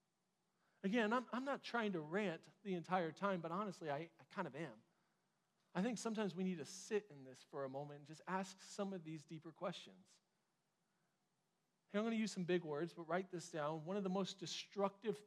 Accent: American